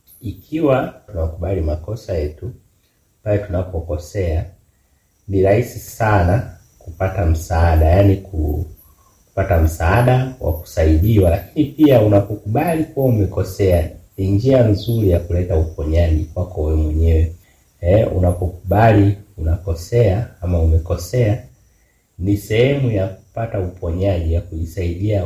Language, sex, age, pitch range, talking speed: Swahili, male, 30-49, 85-105 Hz, 95 wpm